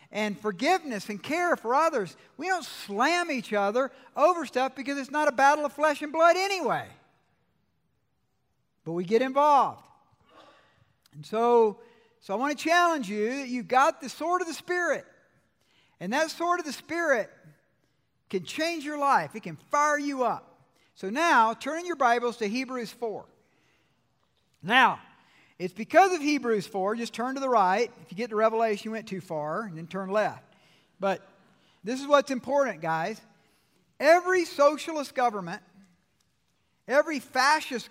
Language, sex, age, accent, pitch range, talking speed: English, male, 50-69, American, 200-290 Hz, 160 wpm